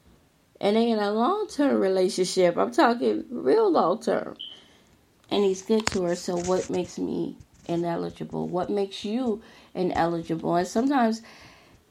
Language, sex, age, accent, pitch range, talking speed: English, female, 30-49, American, 175-220 Hz, 130 wpm